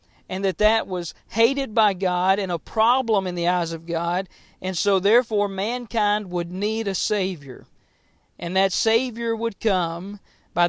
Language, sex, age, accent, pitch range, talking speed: English, male, 40-59, American, 180-220 Hz, 165 wpm